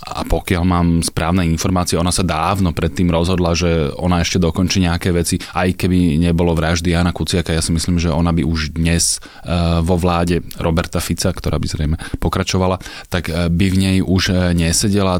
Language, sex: Slovak, male